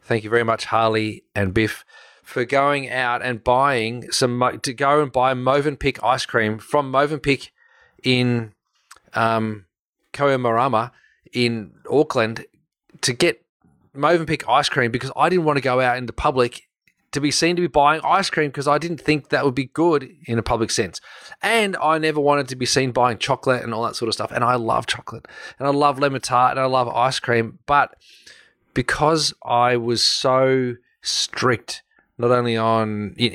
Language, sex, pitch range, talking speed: English, male, 120-145 Hz, 180 wpm